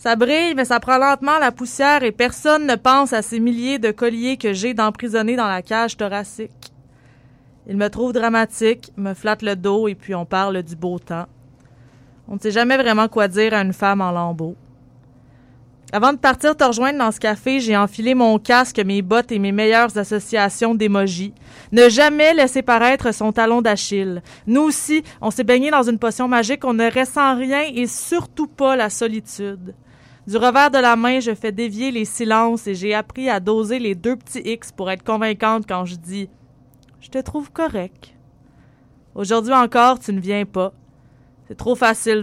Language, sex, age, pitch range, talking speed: French, female, 20-39, 200-255 Hz, 190 wpm